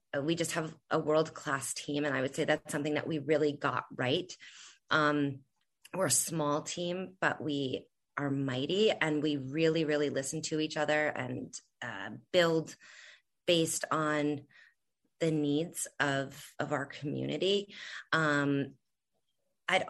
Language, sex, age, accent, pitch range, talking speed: English, female, 30-49, American, 150-165 Hz, 140 wpm